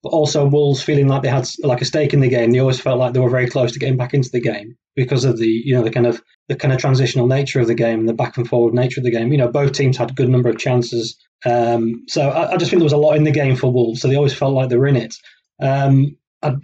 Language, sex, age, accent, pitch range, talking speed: English, male, 20-39, British, 120-145 Hz, 315 wpm